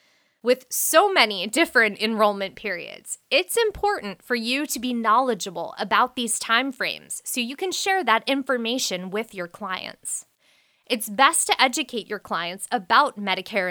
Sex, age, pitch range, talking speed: female, 20-39, 210-290 Hz, 150 wpm